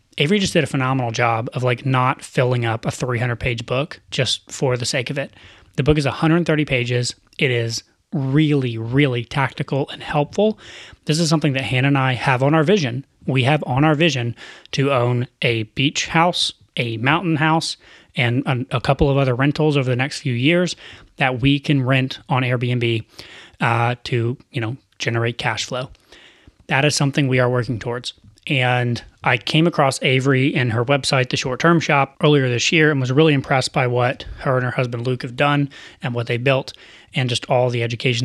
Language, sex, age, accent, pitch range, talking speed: English, male, 30-49, American, 120-145 Hz, 195 wpm